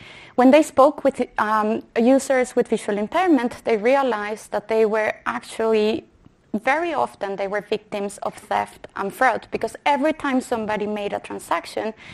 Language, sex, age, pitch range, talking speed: English, female, 20-39, 220-285 Hz, 155 wpm